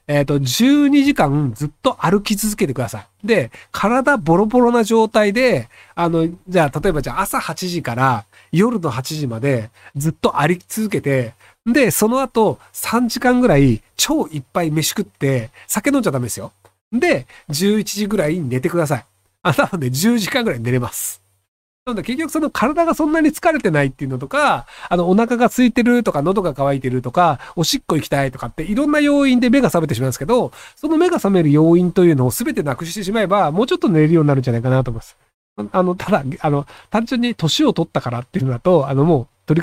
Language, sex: Japanese, male